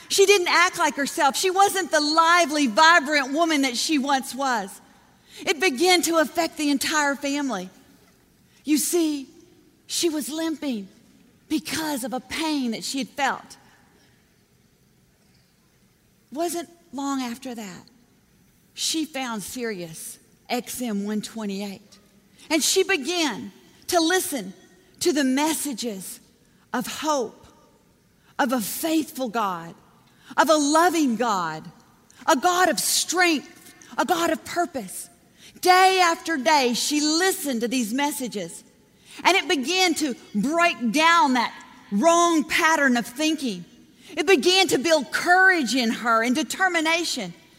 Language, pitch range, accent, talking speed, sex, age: English, 245-345 Hz, American, 125 wpm, female, 40-59